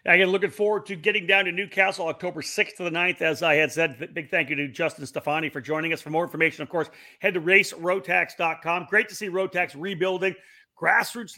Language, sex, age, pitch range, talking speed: English, male, 40-59, 155-190 Hz, 210 wpm